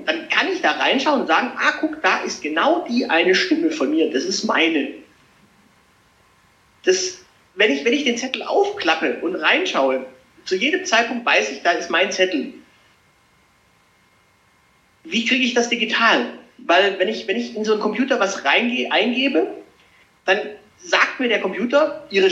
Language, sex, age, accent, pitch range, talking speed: German, male, 40-59, German, 195-250 Hz, 155 wpm